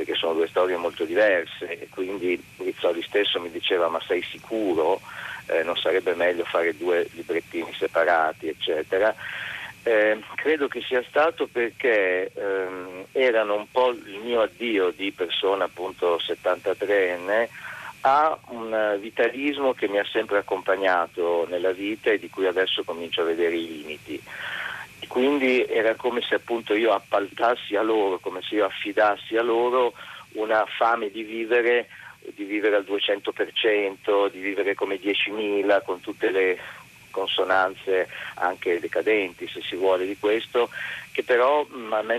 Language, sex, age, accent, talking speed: Italian, male, 50-69, native, 145 wpm